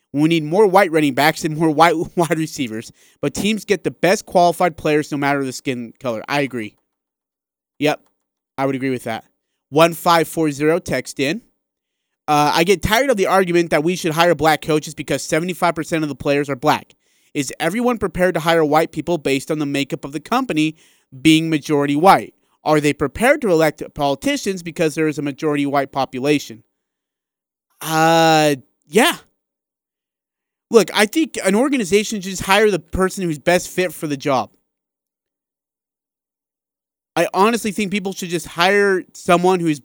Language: English